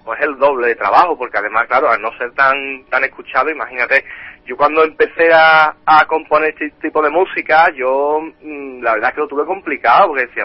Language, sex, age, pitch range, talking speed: Spanish, male, 30-49, 130-175 Hz, 205 wpm